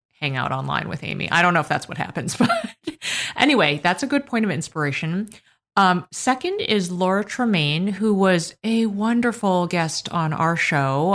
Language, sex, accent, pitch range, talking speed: English, female, American, 155-200 Hz, 180 wpm